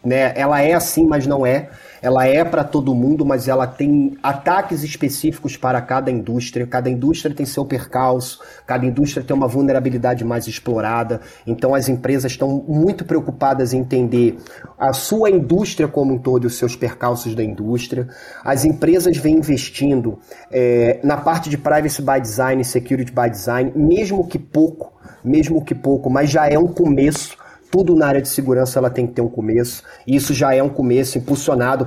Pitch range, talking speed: 125-155 Hz, 175 wpm